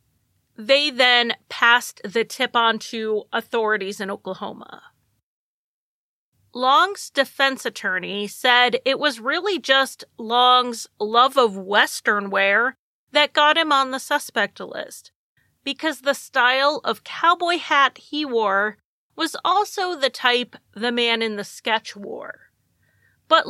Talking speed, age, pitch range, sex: 125 wpm, 30-49, 215-280 Hz, female